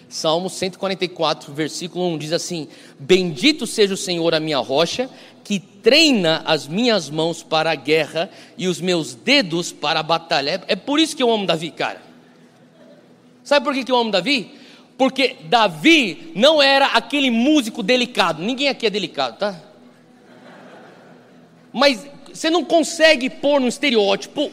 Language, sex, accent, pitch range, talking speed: Portuguese, male, Brazilian, 175-255 Hz, 150 wpm